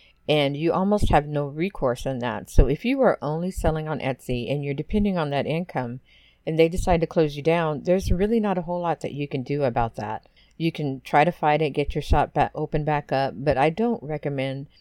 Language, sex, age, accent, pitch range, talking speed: English, female, 50-69, American, 140-175 Hz, 235 wpm